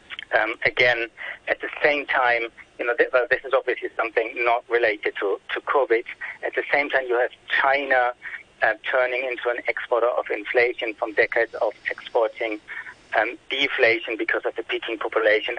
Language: English